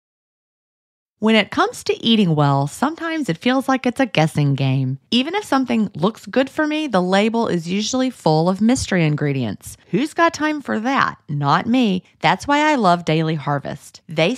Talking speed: 180 wpm